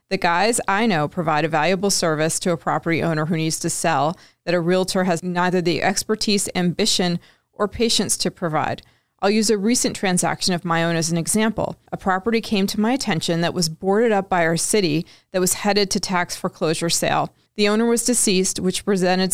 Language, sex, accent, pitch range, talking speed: English, female, American, 170-200 Hz, 200 wpm